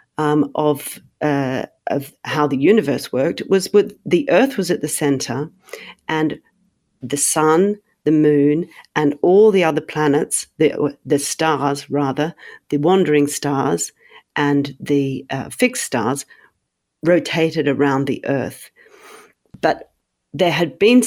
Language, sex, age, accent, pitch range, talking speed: English, female, 50-69, Australian, 140-175 Hz, 130 wpm